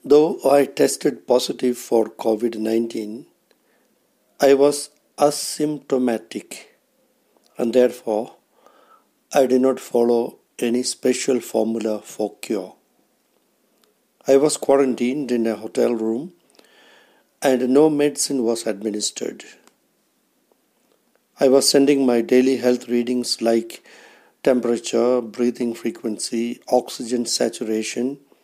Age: 60-79